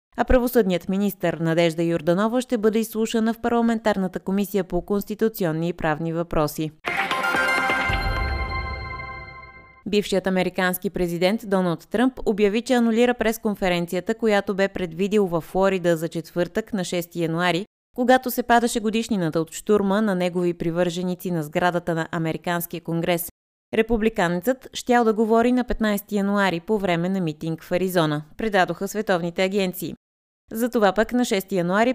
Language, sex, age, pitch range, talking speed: Bulgarian, female, 20-39, 170-220 Hz, 130 wpm